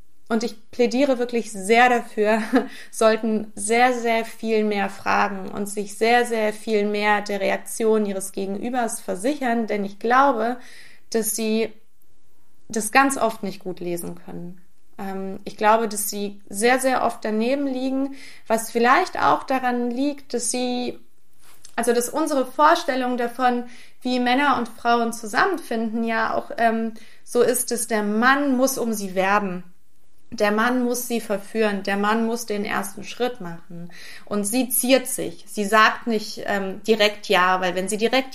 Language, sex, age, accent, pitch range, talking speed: German, female, 30-49, German, 205-245 Hz, 155 wpm